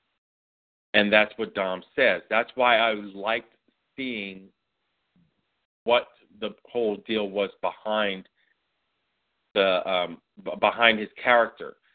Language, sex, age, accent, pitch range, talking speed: English, male, 40-59, American, 95-115 Hz, 105 wpm